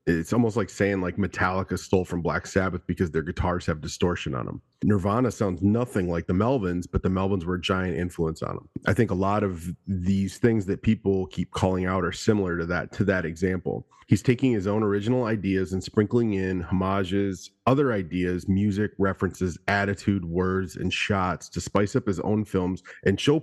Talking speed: 195 wpm